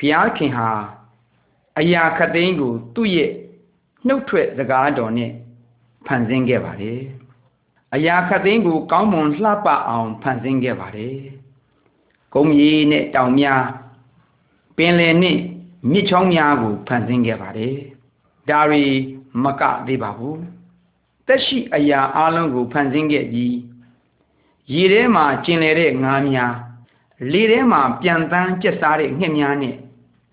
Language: Malay